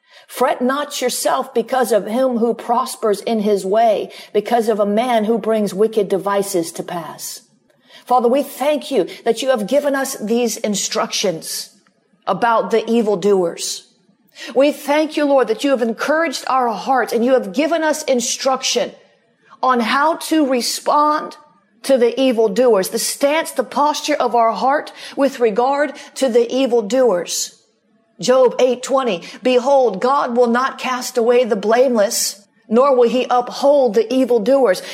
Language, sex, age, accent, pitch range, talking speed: English, female, 50-69, American, 225-270 Hz, 150 wpm